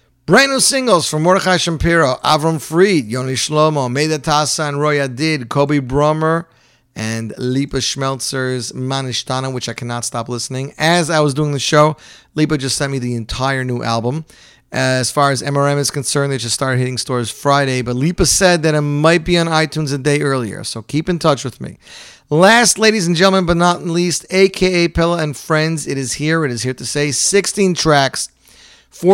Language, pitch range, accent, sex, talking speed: English, 125-155 Hz, American, male, 190 wpm